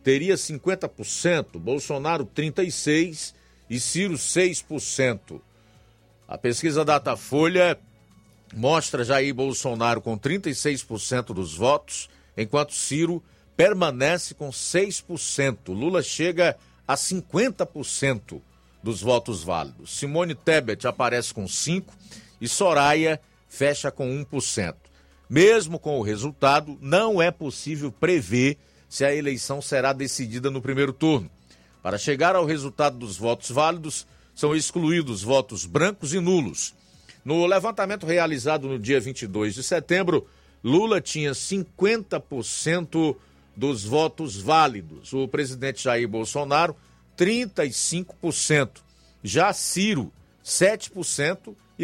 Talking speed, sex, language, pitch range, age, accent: 105 wpm, male, Portuguese, 115-165 Hz, 50-69, Brazilian